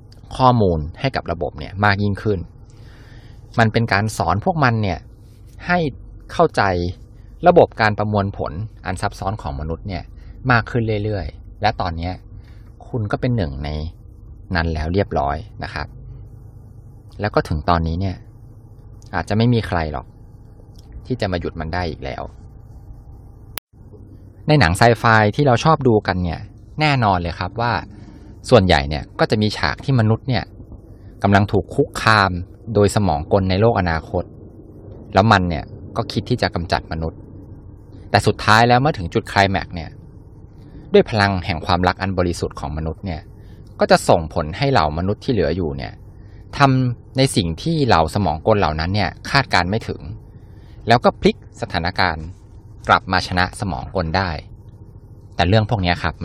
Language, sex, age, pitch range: Thai, male, 20-39, 90-110 Hz